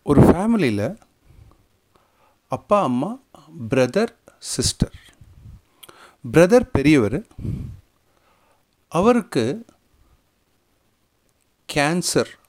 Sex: male